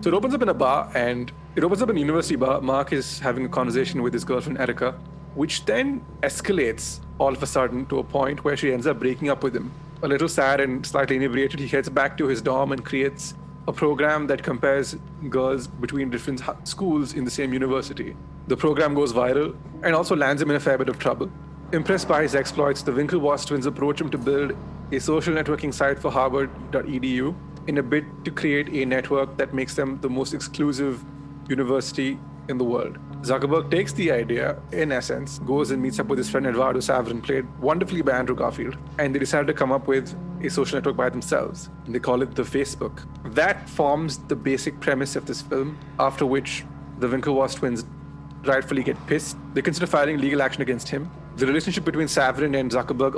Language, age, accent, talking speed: English, 30-49, Indian, 205 wpm